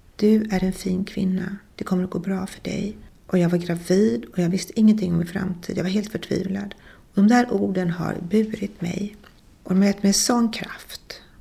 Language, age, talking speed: Swedish, 40-59, 215 wpm